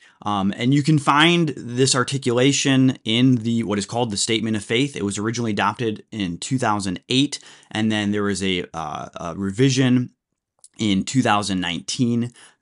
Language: English